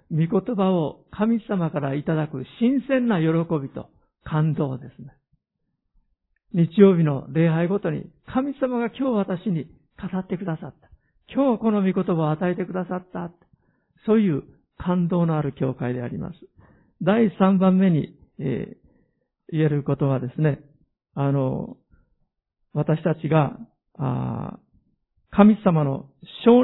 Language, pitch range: Japanese, 150-200 Hz